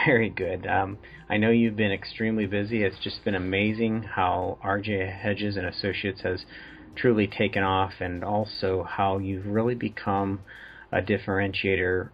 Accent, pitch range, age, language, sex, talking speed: American, 95-110 Hz, 40-59, English, male, 150 wpm